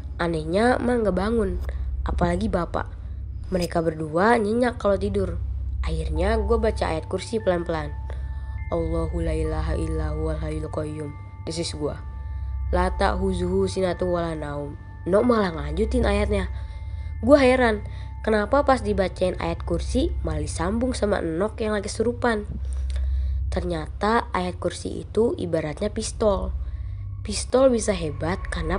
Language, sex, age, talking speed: Indonesian, female, 20-39, 115 wpm